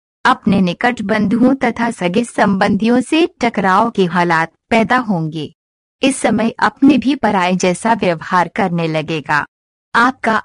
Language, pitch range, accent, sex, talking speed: Hindi, 180-250 Hz, native, female, 125 wpm